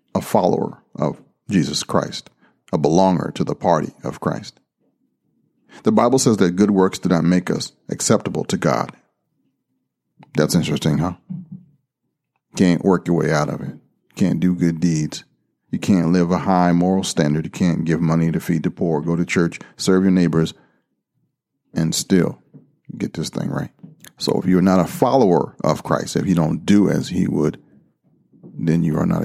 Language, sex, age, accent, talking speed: English, male, 40-59, American, 175 wpm